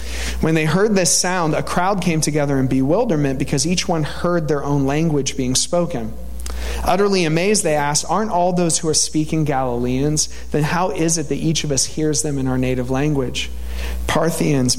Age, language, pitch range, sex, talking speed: 40-59, English, 130-160 Hz, male, 185 wpm